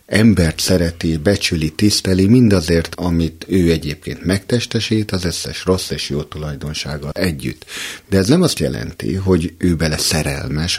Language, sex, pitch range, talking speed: Hungarian, male, 80-115 Hz, 140 wpm